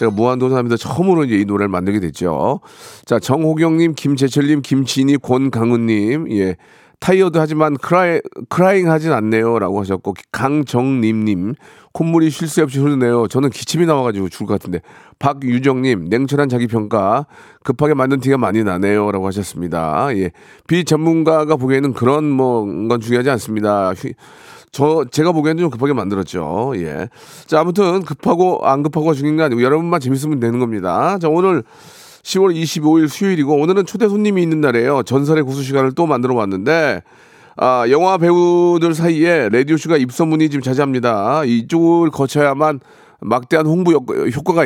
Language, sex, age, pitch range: Korean, male, 40-59, 120-160 Hz